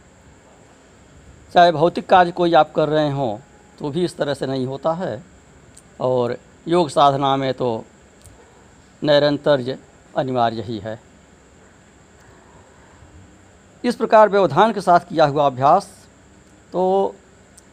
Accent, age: native, 60-79